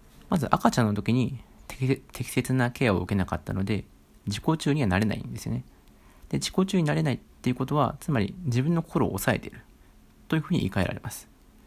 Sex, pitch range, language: male, 100-135 Hz, Japanese